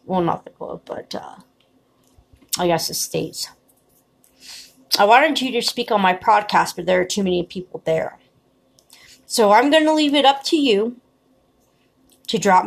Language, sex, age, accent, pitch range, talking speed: English, female, 30-49, American, 175-220 Hz, 170 wpm